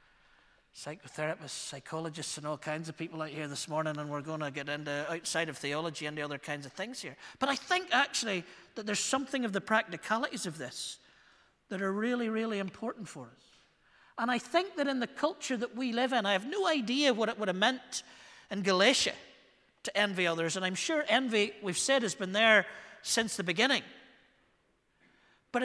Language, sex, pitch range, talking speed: English, male, 170-250 Hz, 195 wpm